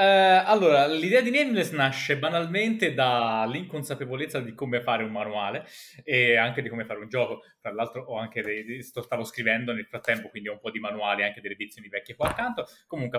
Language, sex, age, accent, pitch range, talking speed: Italian, male, 20-39, native, 110-160 Hz, 200 wpm